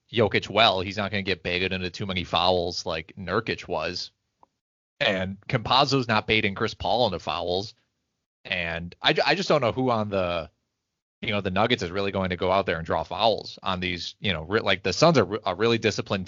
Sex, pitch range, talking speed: male, 90-115 Hz, 220 wpm